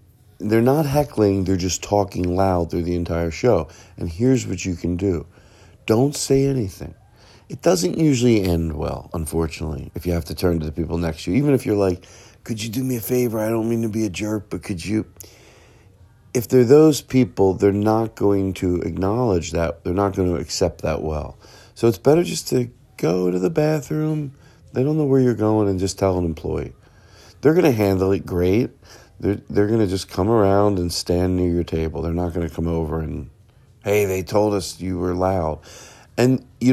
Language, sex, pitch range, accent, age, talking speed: English, male, 90-125 Hz, American, 40-59, 205 wpm